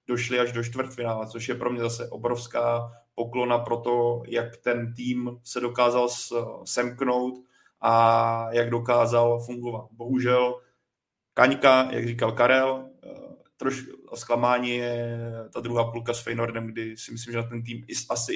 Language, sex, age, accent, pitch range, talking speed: Czech, male, 30-49, native, 115-125 Hz, 145 wpm